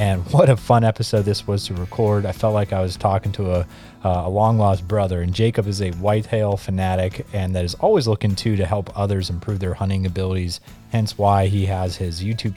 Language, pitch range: English, 95-110 Hz